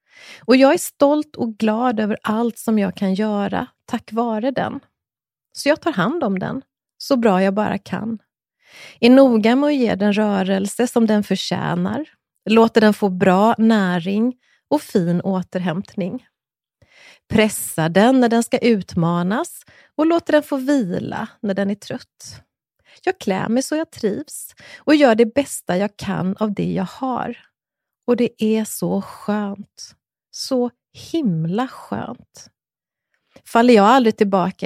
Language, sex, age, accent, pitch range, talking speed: English, female, 30-49, Swedish, 195-245 Hz, 150 wpm